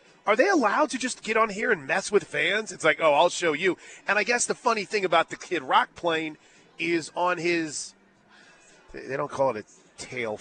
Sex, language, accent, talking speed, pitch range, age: male, English, American, 220 wpm, 145-195 Hz, 40-59